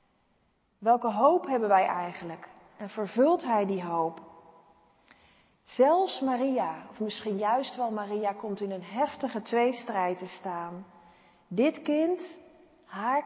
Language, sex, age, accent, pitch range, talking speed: Dutch, female, 40-59, Dutch, 185-245 Hz, 120 wpm